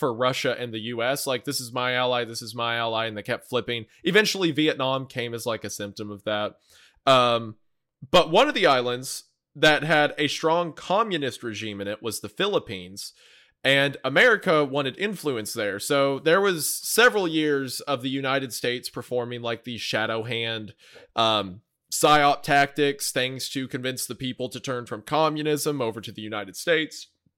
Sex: male